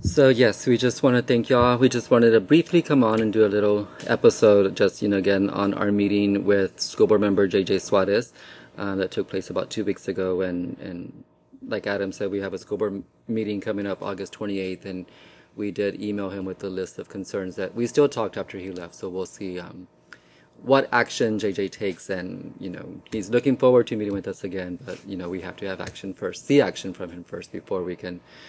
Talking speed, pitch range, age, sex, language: 230 wpm, 95-110 Hz, 30-49, male, English